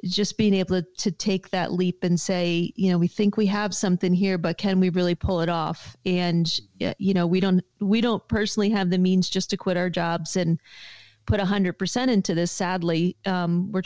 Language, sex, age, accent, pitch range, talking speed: English, female, 40-59, American, 175-190 Hz, 220 wpm